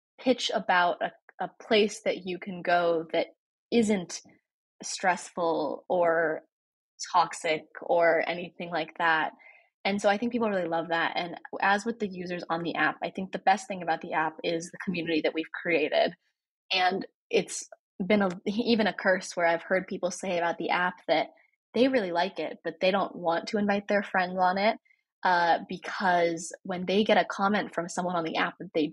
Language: English